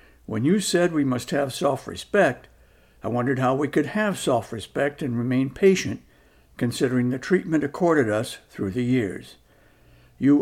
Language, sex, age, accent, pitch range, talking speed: English, male, 60-79, American, 105-150 Hz, 150 wpm